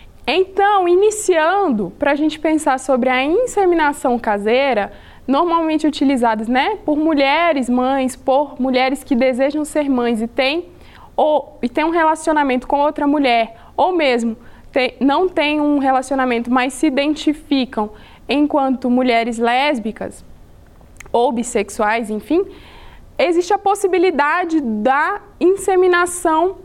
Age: 20-39